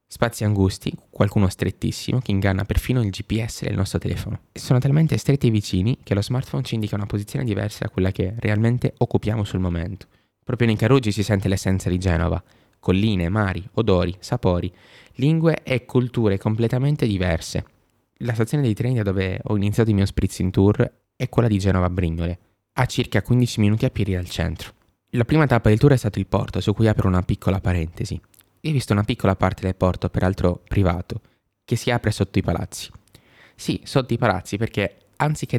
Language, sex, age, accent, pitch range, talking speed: Italian, male, 20-39, native, 95-120 Hz, 185 wpm